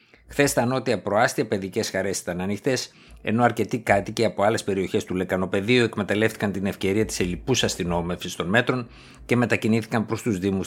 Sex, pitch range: male, 95-120 Hz